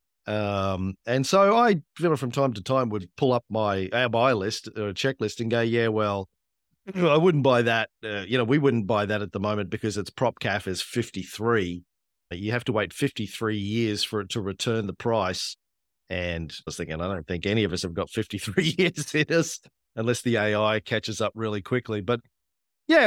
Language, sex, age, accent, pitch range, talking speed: English, male, 40-59, Australian, 100-135 Hz, 205 wpm